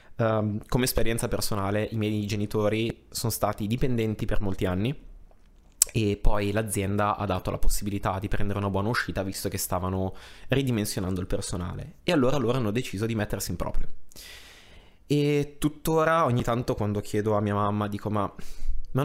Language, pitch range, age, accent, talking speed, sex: Italian, 100-120 Hz, 20-39, native, 160 wpm, male